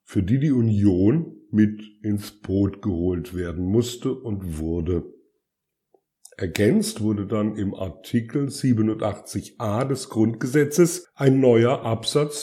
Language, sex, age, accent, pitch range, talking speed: German, male, 50-69, German, 95-125 Hz, 110 wpm